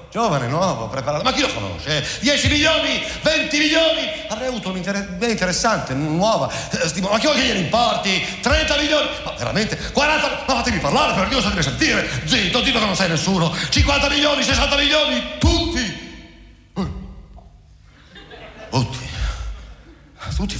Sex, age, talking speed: male, 50-69, 150 wpm